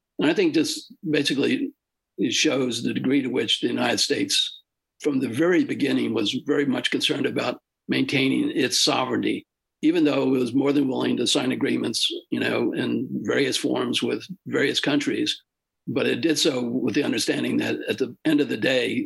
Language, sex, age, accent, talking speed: English, male, 60-79, American, 180 wpm